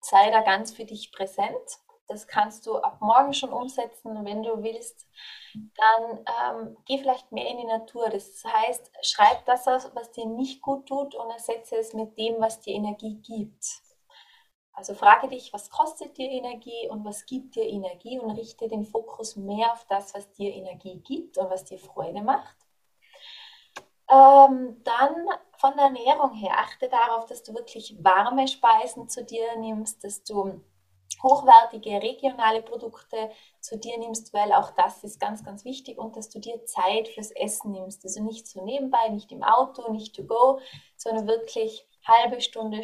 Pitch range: 210-260 Hz